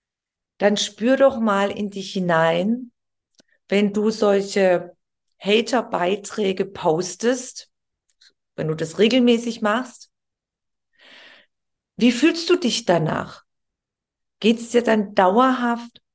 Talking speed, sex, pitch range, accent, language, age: 100 wpm, female, 195-240 Hz, German, German, 40-59